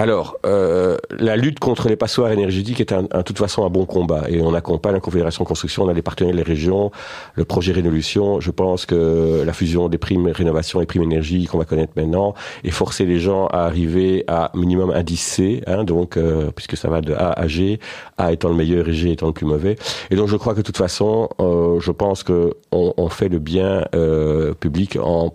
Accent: French